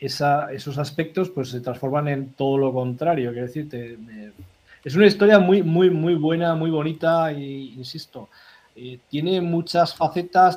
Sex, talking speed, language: male, 165 wpm, Spanish